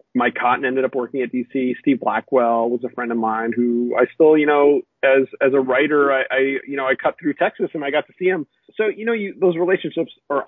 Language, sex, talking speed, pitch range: English, male, 250 wpm, 125-145 Hz